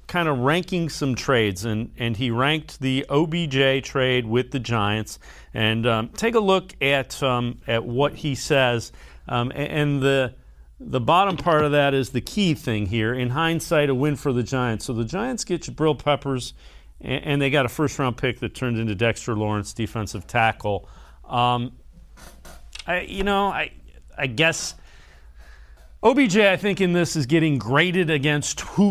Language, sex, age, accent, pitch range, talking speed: English, male, 40-59, American, 110-155 Hz, 180 wpm